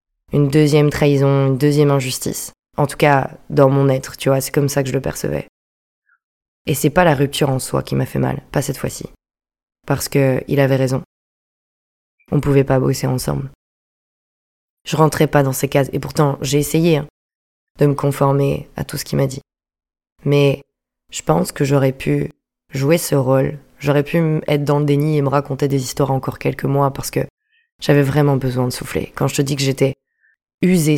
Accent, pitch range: French, 135-150 Hz